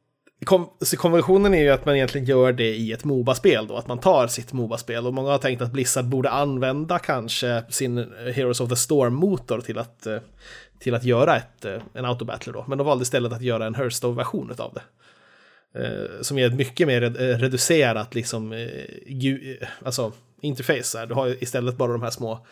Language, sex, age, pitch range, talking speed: Swedish, male, 30-49, 115-135 Hz, 175 wpm